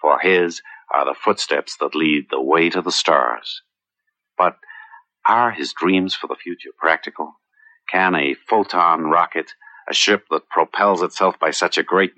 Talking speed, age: 165 wpm, 50-69